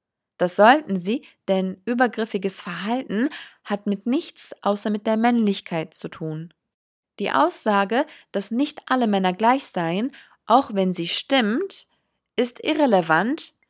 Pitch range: 185-250 Hz